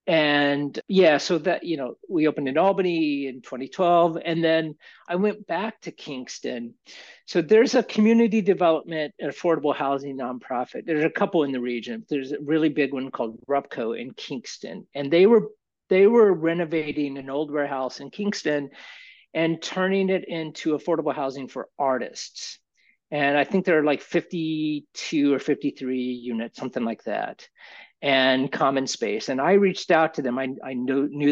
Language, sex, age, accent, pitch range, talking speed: English, male, 50-69, American, 140-180 Hz, 165 wpm